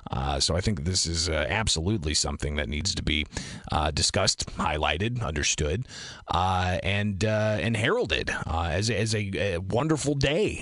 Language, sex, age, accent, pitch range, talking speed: English, male, 30-49, American, 95-145 Hz, 170 wpm